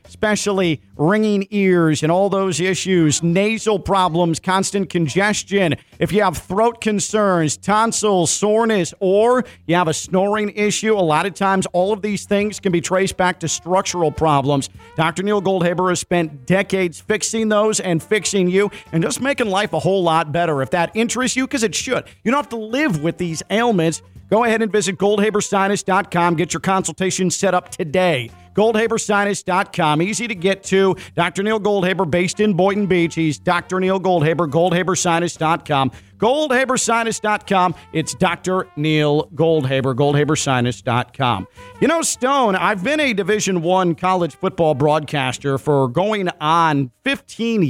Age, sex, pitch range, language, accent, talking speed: 40-59, male, 160-210 Hz, English, American, 155 wpm